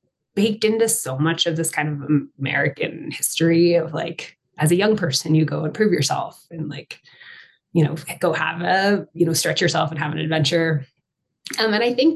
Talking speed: 195 wpm